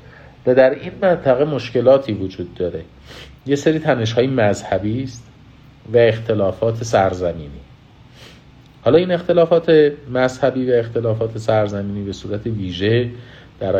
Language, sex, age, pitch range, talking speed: Persian, male, 50-69, 95-120 Hz, 110 wpm